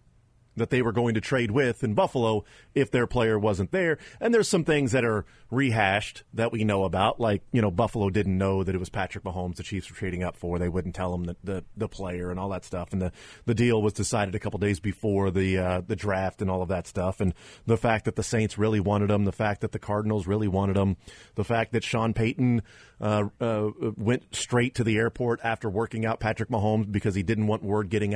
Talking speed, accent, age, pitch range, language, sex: 240 wpm, American, 30-49, 100-125 Hz, English, male